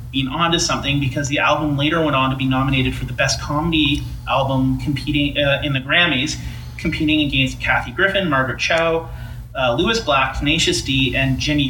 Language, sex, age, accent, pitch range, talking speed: English, male, 30-49, American, 130-160 Hz, 185 wpm